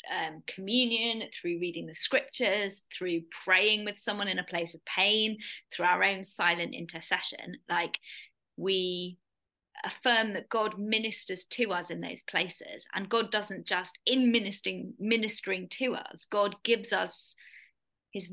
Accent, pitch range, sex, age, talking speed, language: British, 180-220 Hz, female, 20-39, 145 wpm, English